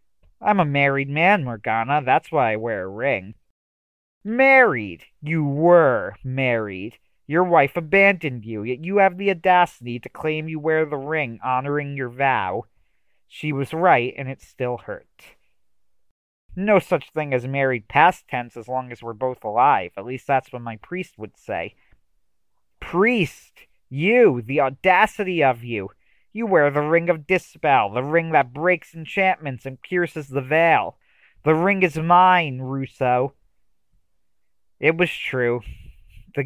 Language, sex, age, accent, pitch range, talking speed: English, male, 40-59, American, 110-160 Hz, 150 wpm